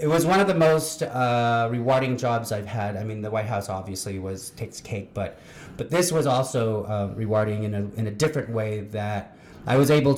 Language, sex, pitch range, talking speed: English, male, 105-125 Hz, 220 wpm